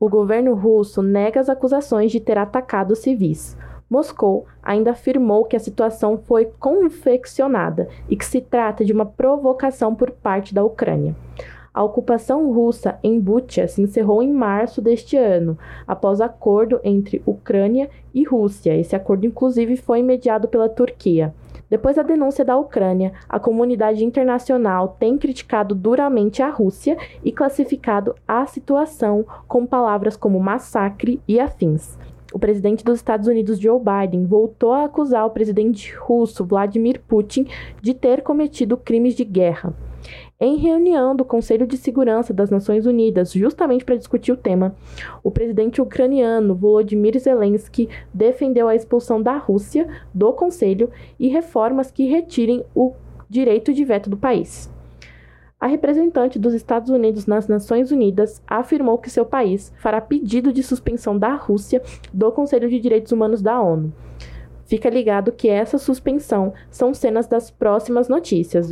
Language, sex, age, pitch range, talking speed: Portuguese, female, 20-39, 210-255 Hz, 145 wpm